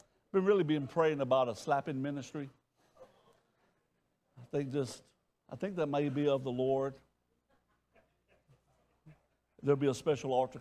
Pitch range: 120-155 Hz